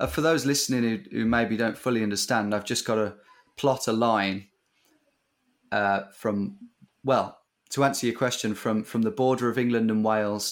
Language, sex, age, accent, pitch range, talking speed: English, male, 20-39, British, 110-125 Hz, 185 wpm